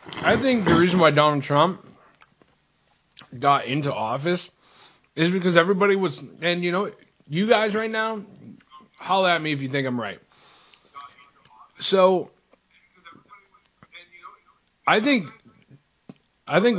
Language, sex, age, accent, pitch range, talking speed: English, male, 30-49, American, 130-160 Hz, 120 wpm